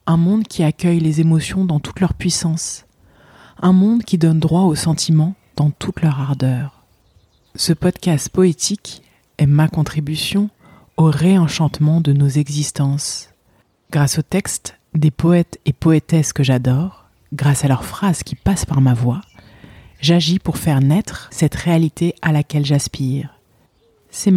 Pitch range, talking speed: 140-185 Hz, 150 wpm